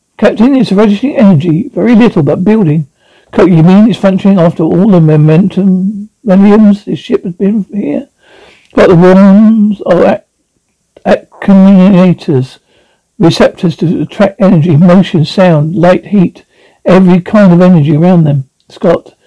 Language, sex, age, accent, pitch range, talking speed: English, male, 60-79, British, 170-215 Hz, 130 wpm